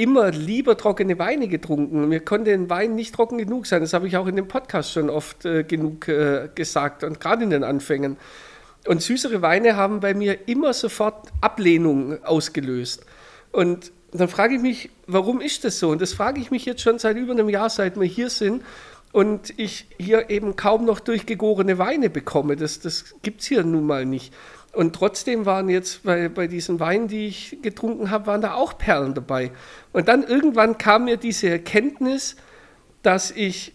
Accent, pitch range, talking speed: German, 170-220 Hz, 190 wpm